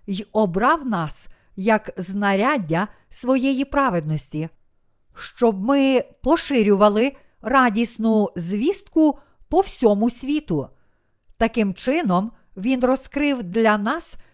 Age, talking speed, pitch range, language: 50-69, 90 wpm, 195-260 Hz, Ukrainian